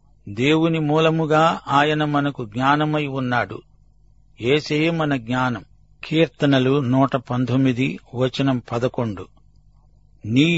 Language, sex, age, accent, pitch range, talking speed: Telugu, male, 50-69, native, 130-150 Hz, 85 wpm